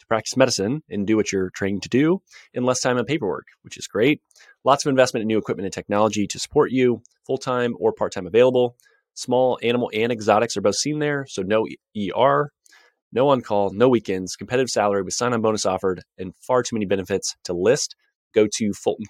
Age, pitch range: 30-49, 100-135 Hz